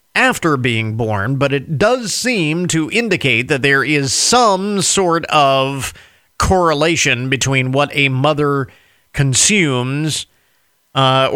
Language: English